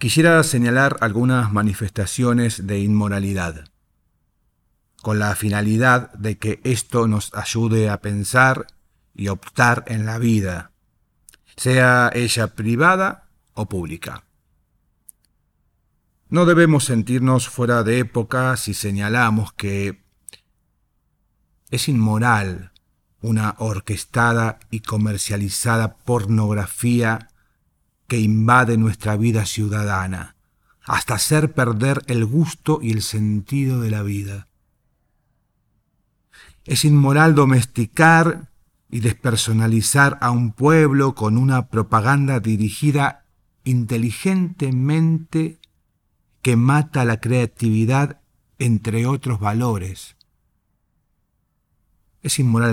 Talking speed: 90 wpm